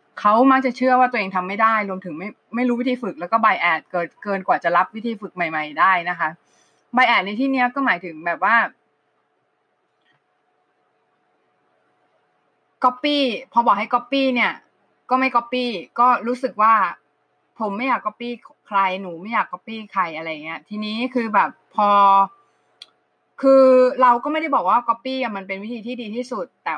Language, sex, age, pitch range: Thai, female, 20-39, 195-250 Hz